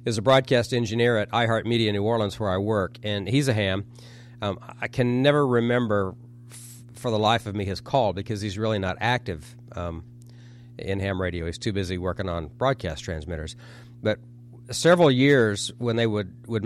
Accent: American